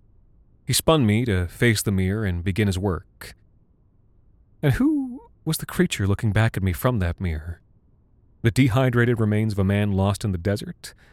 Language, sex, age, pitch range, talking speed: English, male, 30-49, 95-120 Hz, 180 wpm